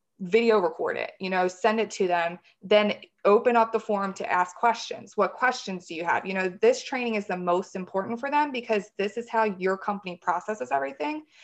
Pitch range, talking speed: 190-230 Hz, 210 wpm